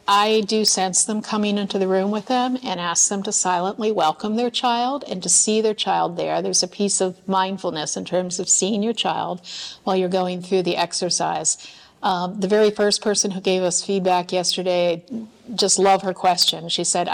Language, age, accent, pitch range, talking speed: English, 50-69, American, 180-220 Hz, 200 wpm